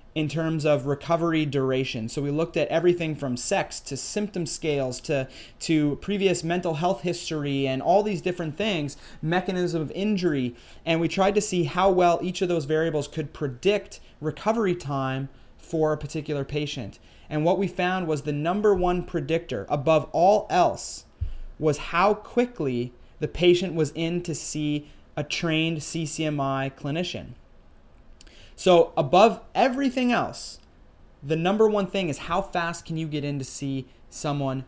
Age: 30-49